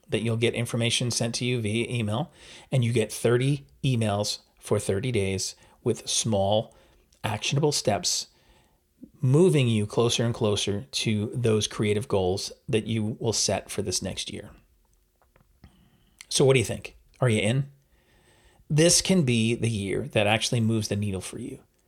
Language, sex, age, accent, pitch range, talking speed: English, male, 40-59, American, 105-130 Hz, 160 wpm